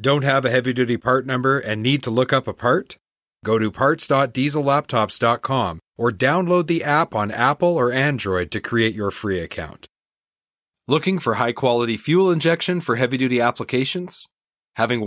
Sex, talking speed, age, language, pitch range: male, 150 wpm, 40-59, English, 100-130 Hz